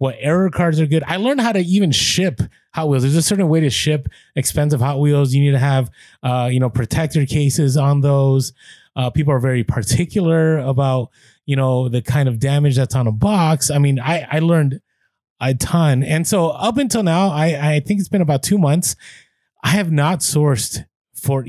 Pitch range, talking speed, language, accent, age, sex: 130-160 Hz, 205 wpm, English, American, 30-49, male